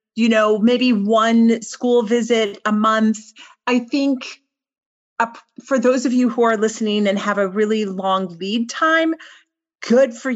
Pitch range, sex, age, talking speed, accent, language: 220-290 Hz, female, 40-59, 155 wpm, American, English